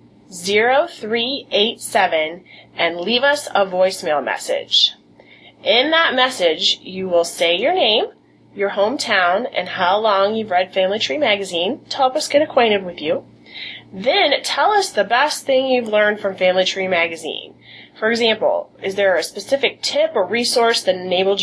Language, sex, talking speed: English, female, 155 wpm